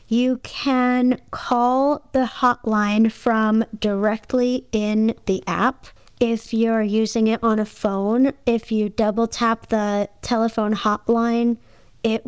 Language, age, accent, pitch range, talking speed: English, 30-49, American, 205-235 Hz, 120 wpm